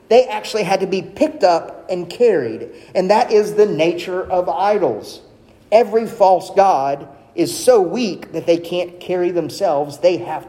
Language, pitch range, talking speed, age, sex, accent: English, 145-195 Hz, 165 wpm, 40-59, male, American